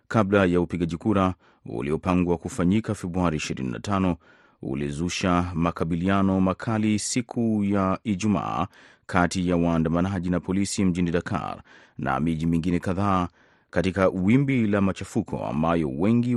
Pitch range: 85-105 Hz